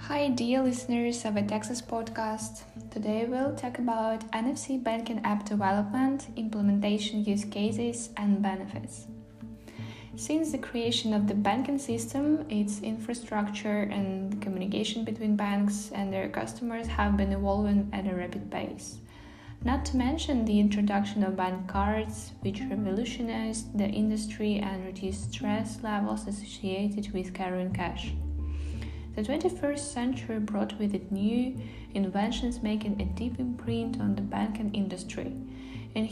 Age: 10-29